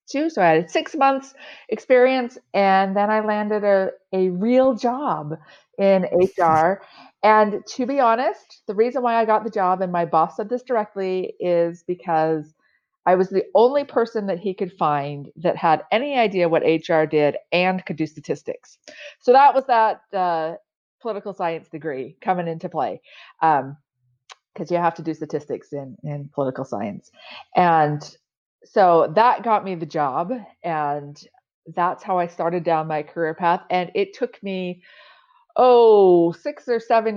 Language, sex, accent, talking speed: English, female, American, 165 wpm